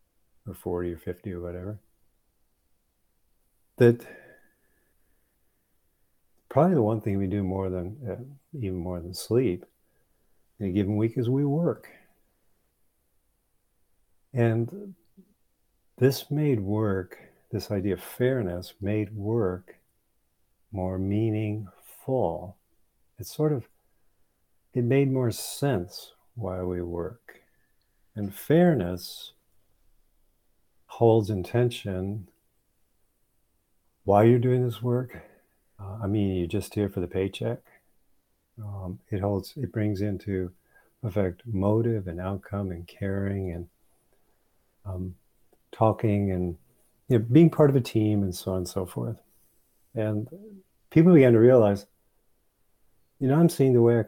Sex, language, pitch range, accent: male, English, 90-120 Hz, American